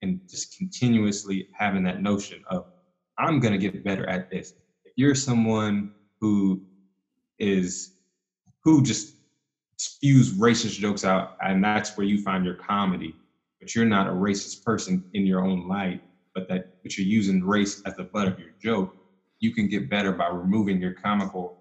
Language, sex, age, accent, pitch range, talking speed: English, male, 20-39, American, 95-115 Hz, 165 wpm